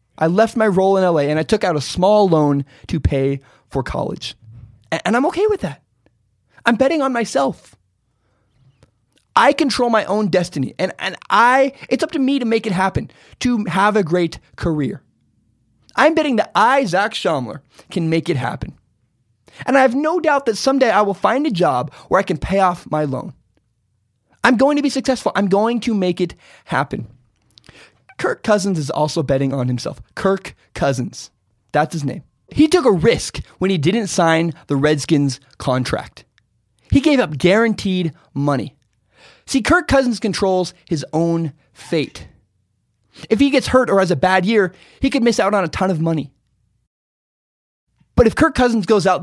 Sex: male